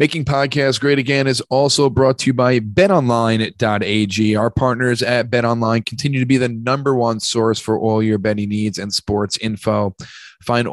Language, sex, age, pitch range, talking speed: English, male, 30-49, 110-130 Hz, 175 wpm